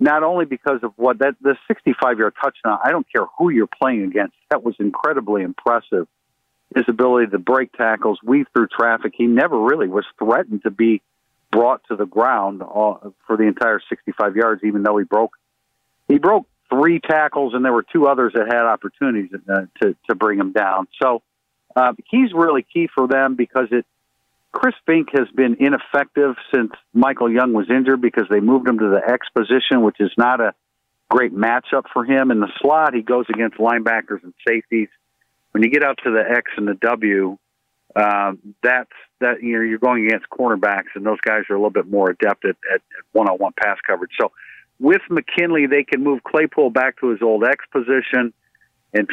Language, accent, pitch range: English, American, 105-130 Hz